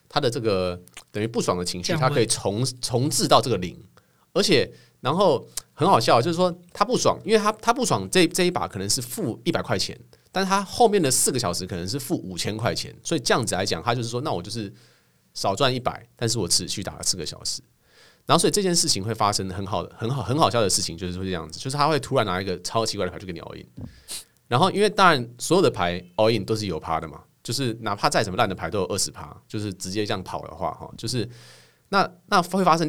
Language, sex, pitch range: Chinese, male, 95-155 Hz